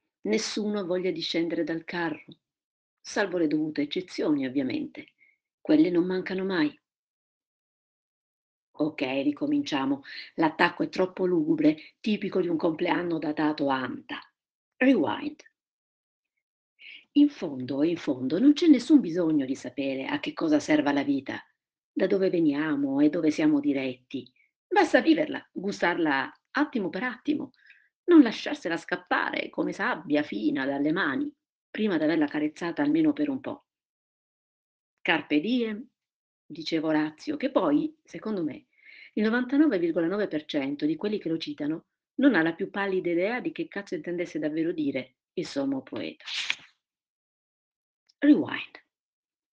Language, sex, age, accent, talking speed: Italian, female, 50-69, native, 125 wpm